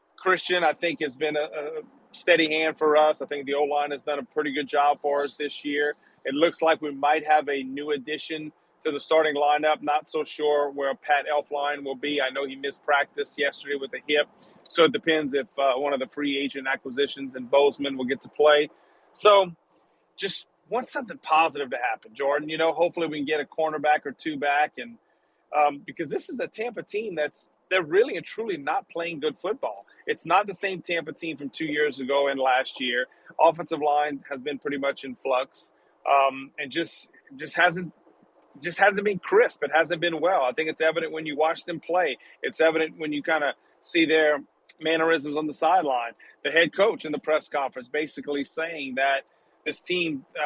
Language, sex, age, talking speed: English, male, 40-59, 210 wpm